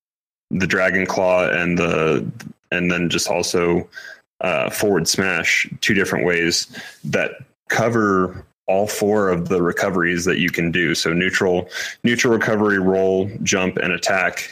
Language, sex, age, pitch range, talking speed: English, male, 20-39, 85-95 Hz, 140 wpm